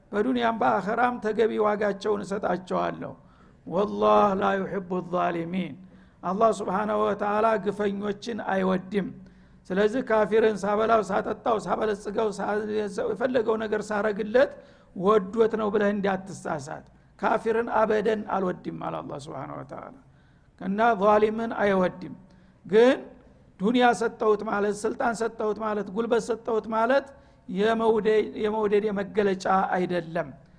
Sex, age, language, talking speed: male, 60-79, Amharic, 100 wpm